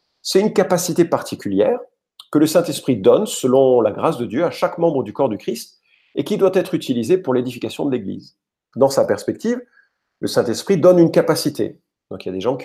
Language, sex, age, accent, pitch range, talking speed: French, male, 40-59, French, 120-180 Hz, 210 wpm